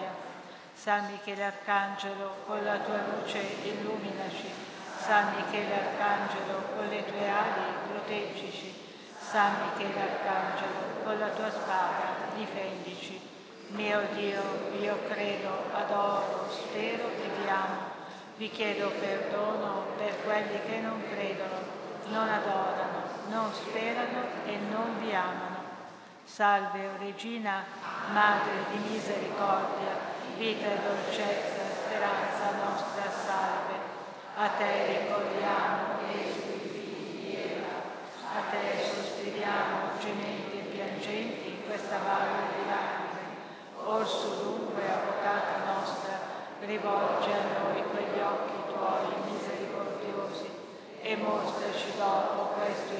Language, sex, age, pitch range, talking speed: Italian, female, 50-69, 195-210 Hz, 105 wpm